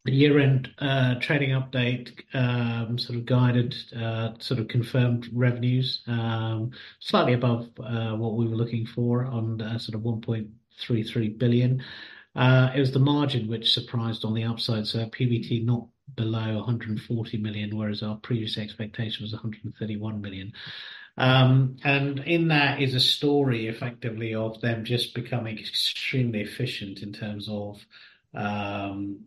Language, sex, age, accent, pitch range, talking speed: English, male, 50-69, British, 105-120 Hz, 140 wpm